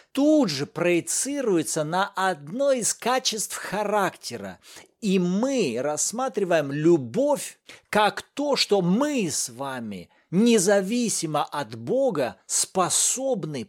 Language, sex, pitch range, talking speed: Russian, male, 175-245 Hz, 95 wpm